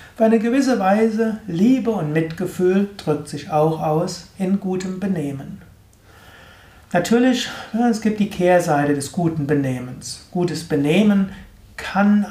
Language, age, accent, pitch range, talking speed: German, 60-79, German, 145-180 Hz, 120 wpm